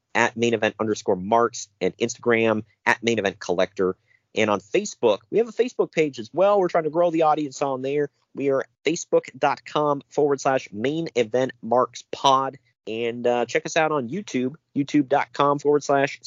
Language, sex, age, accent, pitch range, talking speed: English, male, 40-59, American, 130-180 Hz, 175 wpm